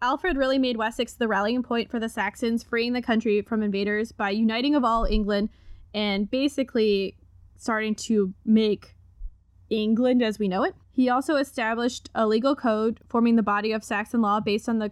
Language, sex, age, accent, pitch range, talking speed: English, female, 10-29, American, 205-245 Hz, 180 wpm